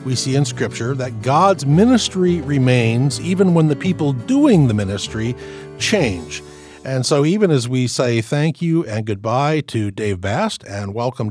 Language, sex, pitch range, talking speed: English, male, 115-155 Hz, 165 wpm